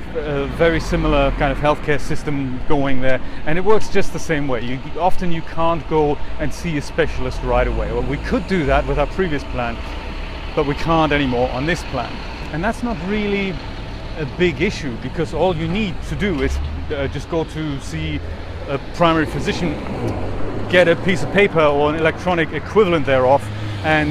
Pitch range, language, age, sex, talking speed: 130-165 Hz, English, 40-59, male, 190 wpm